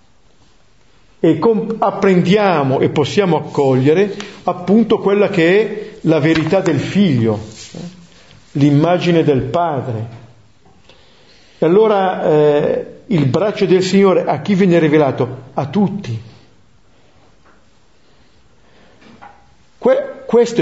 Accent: native